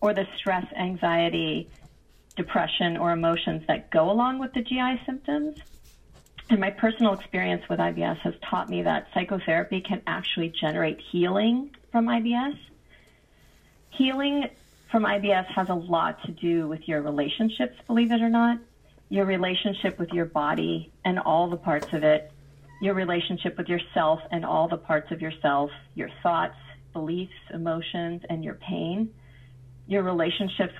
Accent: American